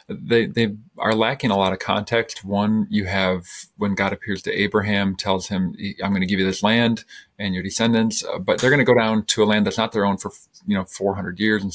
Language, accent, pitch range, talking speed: English, American, 95-115 Hz, 240 wpm